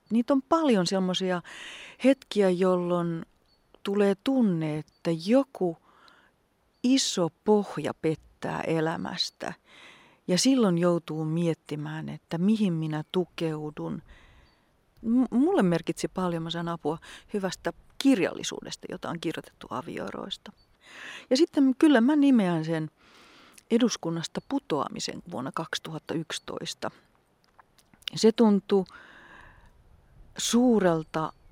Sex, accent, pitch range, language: female, native, 170-250 Hz, Finnish